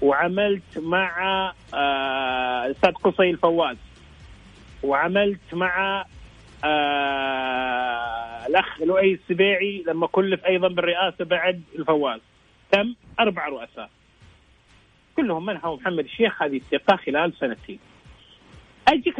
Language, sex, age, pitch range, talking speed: English, male, 30-49, 140-205 Hz, 90 wpm